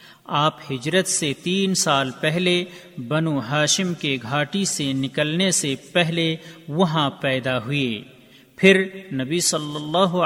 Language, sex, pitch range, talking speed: Urdu, male, 140-180 Hz, 125 wpm